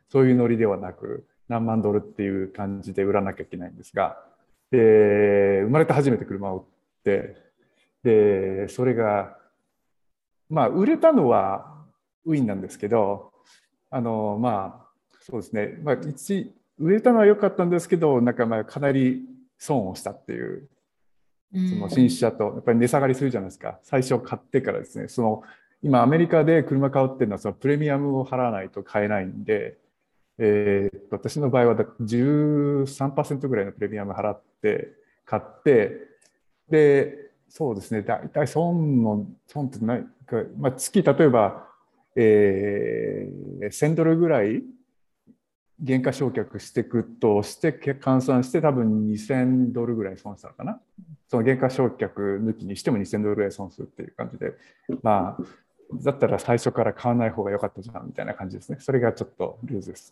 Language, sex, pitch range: Japanese, male, 105-145 Hz